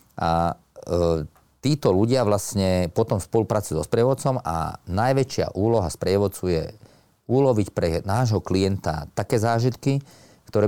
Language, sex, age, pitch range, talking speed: Slovak, male, 40-59, 90-110 Hz, 120 wpm